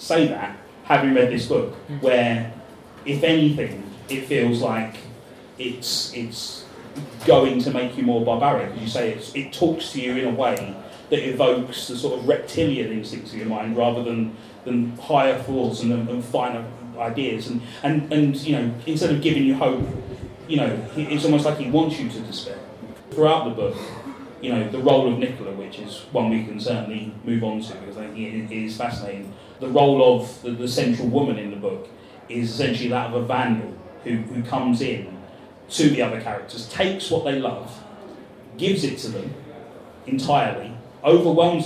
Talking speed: 185 wpm